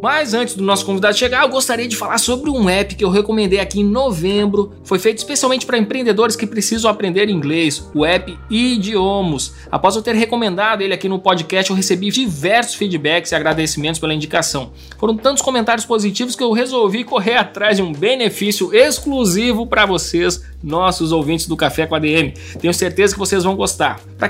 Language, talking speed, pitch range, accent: Portuguese, 190 wpm, 180-230 Hz, Brazilian